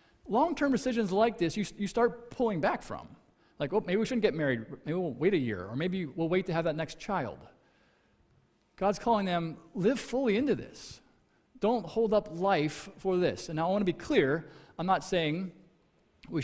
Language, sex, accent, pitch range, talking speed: English, male, American, 140-195 Hz, 200 wpm